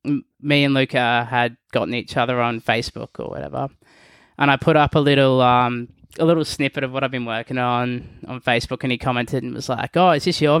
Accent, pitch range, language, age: Australian, 125-150 Hz, English, 20-39